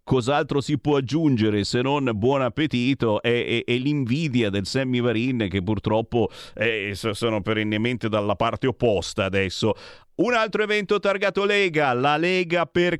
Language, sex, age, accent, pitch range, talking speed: Italian, male, 40-59, native, 105-145 Hz, 145 wpm